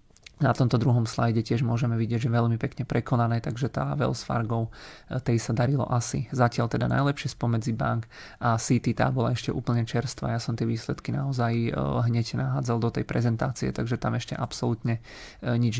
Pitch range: 115-130 Hz